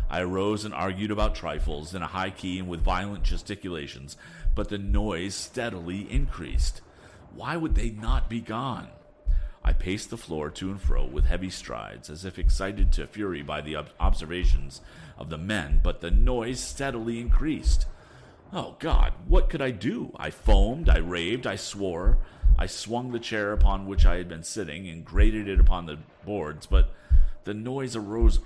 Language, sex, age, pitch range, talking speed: English, male, 40-59, 75-110 Hz, 175 wpm